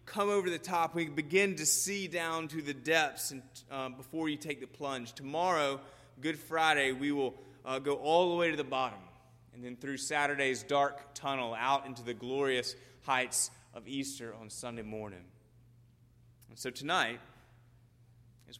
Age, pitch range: 30-49, 120-145 Hz